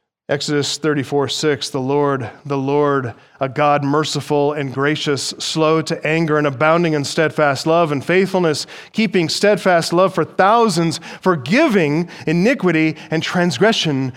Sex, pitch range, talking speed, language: male, 140-185 Hz, 130 wpm, English